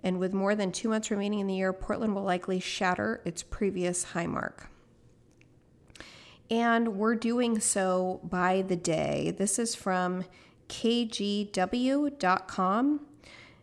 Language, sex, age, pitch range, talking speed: English, female, 40-59, 185-230 Hz, 130 wpm